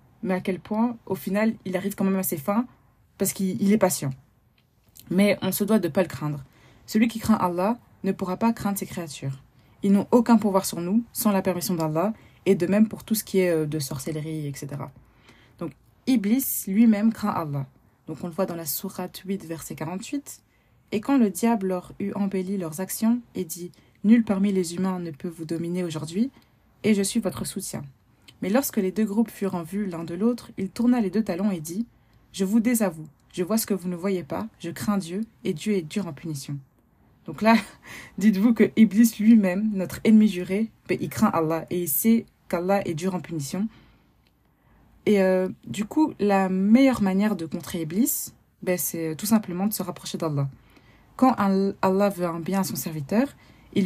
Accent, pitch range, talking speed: French, 170-210 Hz, 205 wpm